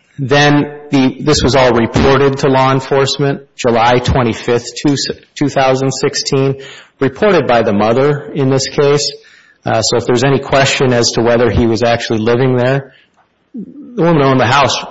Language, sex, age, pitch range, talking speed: English, male, 40-59, 110-135 Hz, 155 wpm